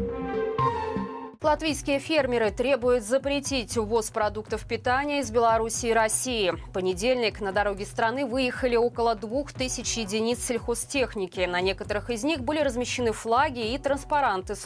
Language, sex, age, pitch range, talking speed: Russian, female, 20-39, 210-270 Hz, 125 wpm